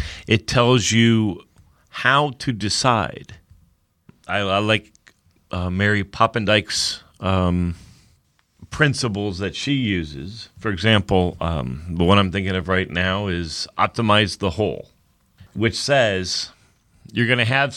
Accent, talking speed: American, 120 wpm